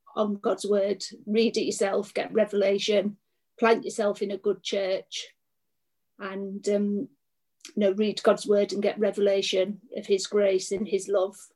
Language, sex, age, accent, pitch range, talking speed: English, female, 40-59, British, 200-215 Hz, 155 wpm